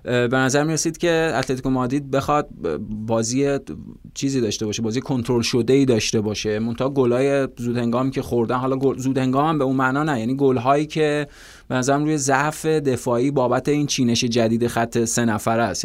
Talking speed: 180 wpm